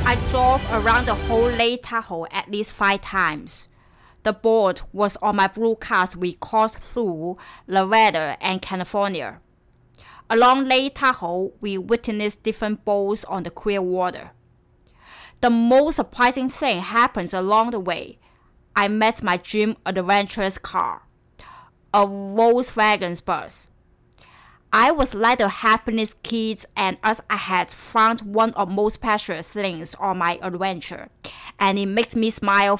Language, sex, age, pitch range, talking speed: English, female, 30-49, 190-225 Hz, 140 wpm